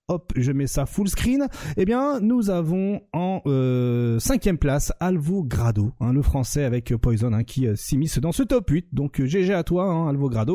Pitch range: 130-200 Hz